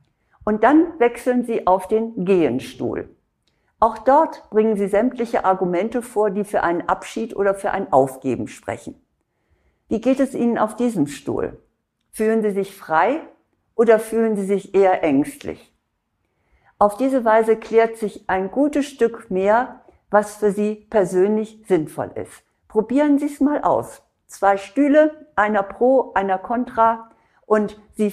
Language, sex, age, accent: German, female, 50-69, German